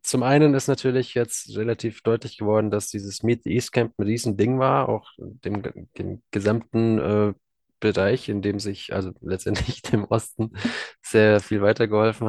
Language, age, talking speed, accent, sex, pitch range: German, 20-39, 165 wpm, German, male, 100-115 Hz